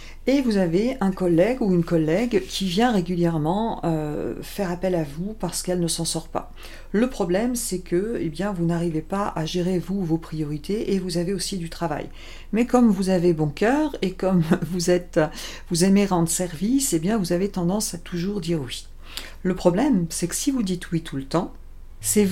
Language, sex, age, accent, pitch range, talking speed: French, female, 50-69, French, 165-210 Hz, 205 wpm